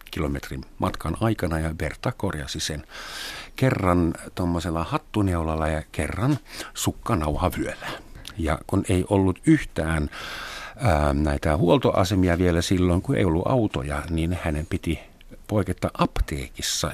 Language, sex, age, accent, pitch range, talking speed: Finnish, male, 50-69, native, 80-105 Hz, 115 wpm